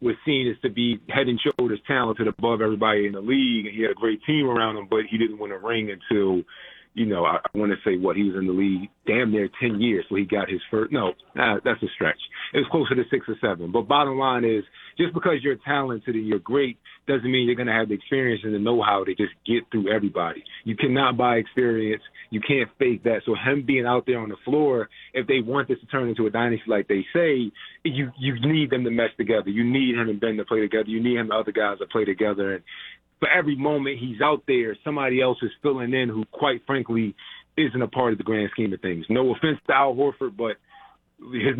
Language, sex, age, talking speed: English, male, 30-49, 250 wpm